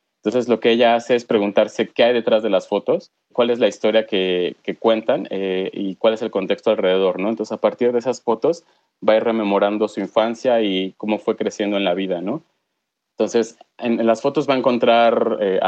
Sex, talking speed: male, 220 wpm